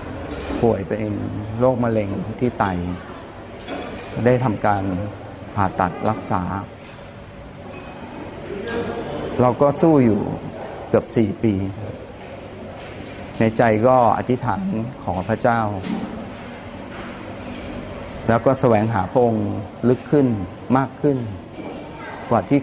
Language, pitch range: Thai, 105-130 Hz